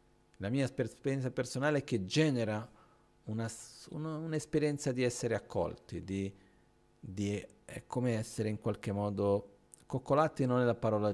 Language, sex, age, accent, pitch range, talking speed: Italian, male, 50-69, native, 105-140 Hz, 140 wpm